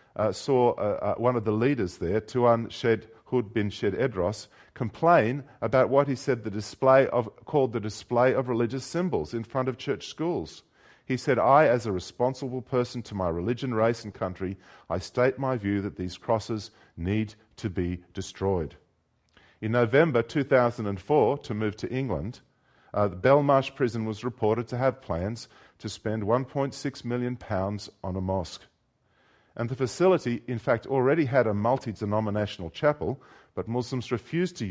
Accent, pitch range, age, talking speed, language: Australian, 105-130 Hz, 40-59, 165 wpm, English